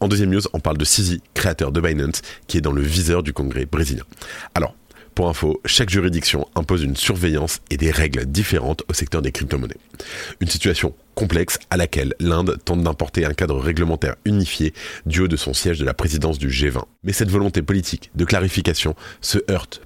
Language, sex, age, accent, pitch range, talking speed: French, male, 30-49, French, 80-95 Hz, 195 wpm